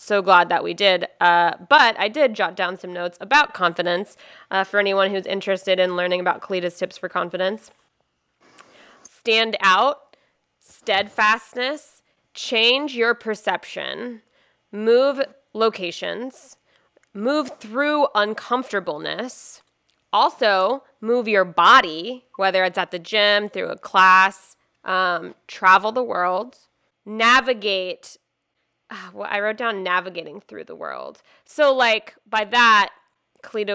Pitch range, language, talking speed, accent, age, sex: 185-240 Hz, English, 120 wpm, American, 20-39, female